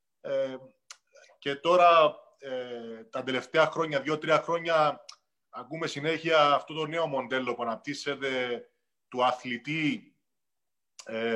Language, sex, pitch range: Greek, male, 130-170 Hz